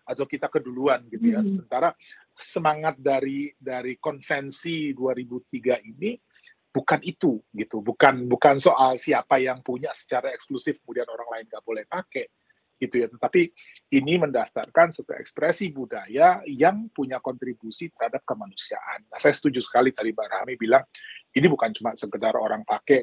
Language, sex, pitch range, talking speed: Indonesian, male, 115-165 Hz, 145 wpm